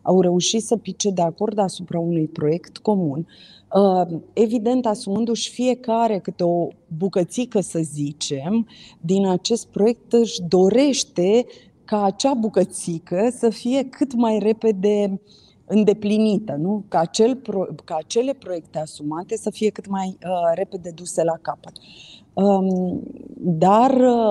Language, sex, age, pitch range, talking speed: Romanian, female, 30-49, 170-215 Hz, 115 wpm